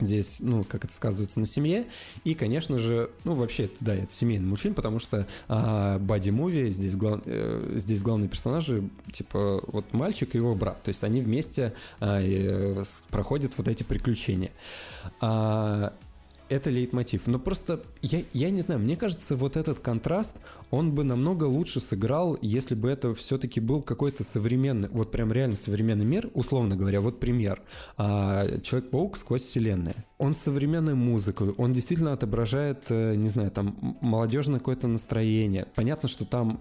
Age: 20-39